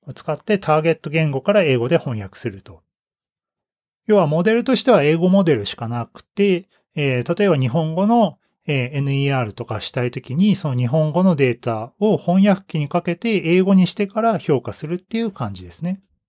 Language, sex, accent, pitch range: Japanese, male, native, 125-195 Hz